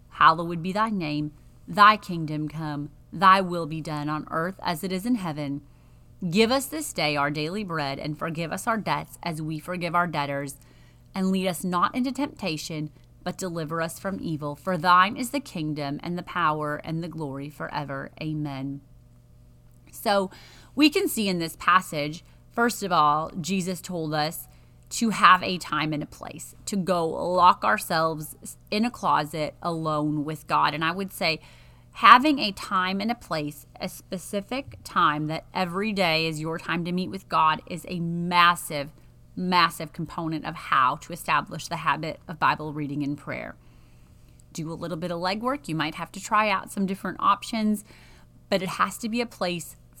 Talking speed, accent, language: 180 wpm, American, English